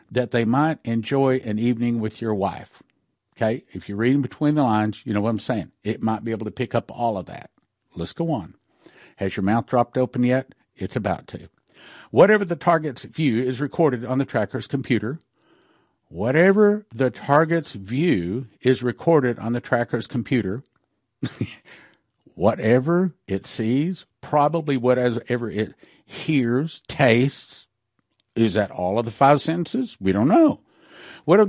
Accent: American